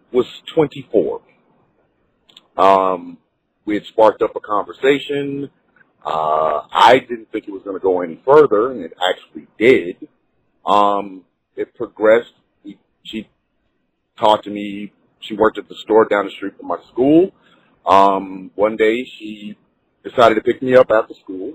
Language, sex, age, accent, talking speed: English, male, 40-59, American, 155 wpm